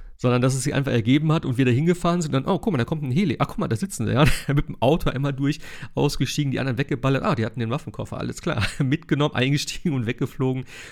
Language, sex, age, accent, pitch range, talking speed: German, male, 40-59, German, 110-135 Hz, 260 wpm